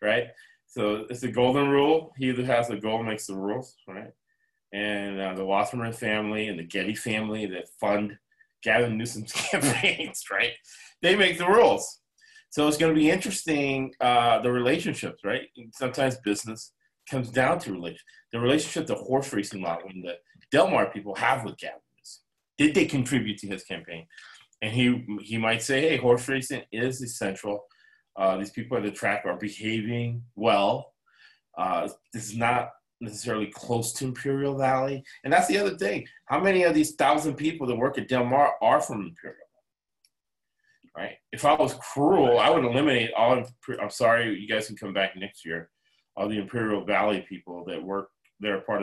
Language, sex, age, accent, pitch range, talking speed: English, male, 30-49, American, 105-140 Hz, 175 wpm